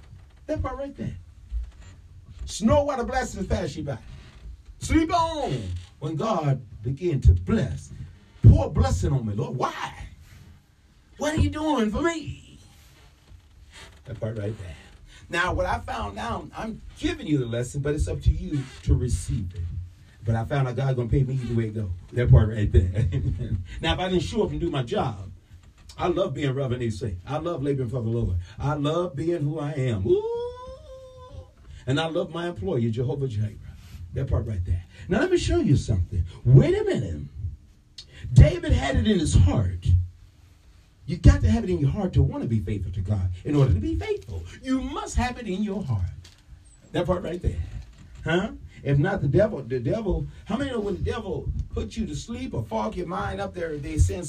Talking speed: 200 wpm